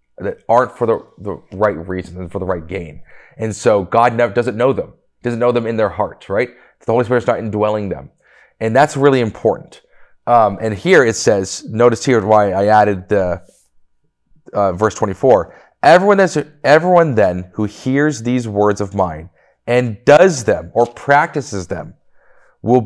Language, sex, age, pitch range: English, male, 30-49, 95-120 Hz